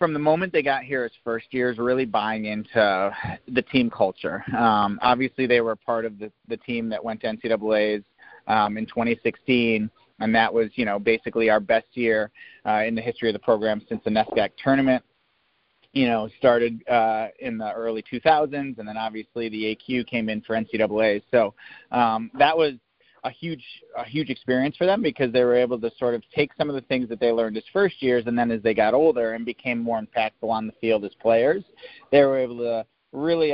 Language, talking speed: English, 210 wpm